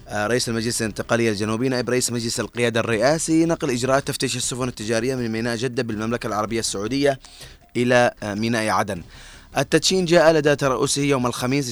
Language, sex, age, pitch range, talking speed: Arabic, male, 20-39, 110-130 Hz, 150 wpm